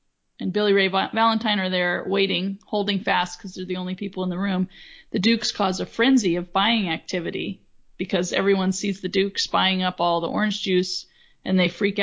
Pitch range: 185-210 Hz